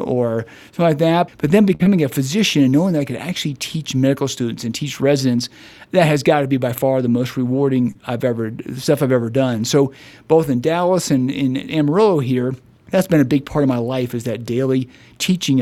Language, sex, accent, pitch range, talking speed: English, male, American, 125-160 Hz, 220 wpm